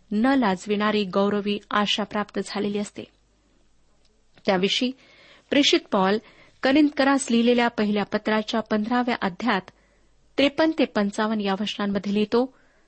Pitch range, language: 205-270 Hz, Marathi